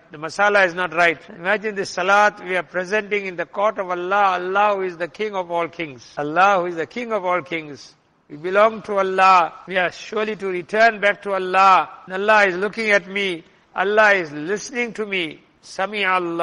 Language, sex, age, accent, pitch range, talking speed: English, male, 60-79, Indian, 180-215 Hz, 200 wpm